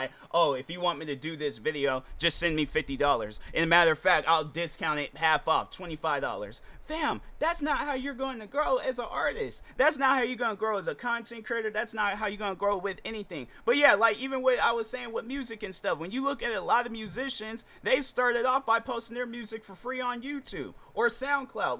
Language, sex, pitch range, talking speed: English, male, 145-235 Hz, 240 wpm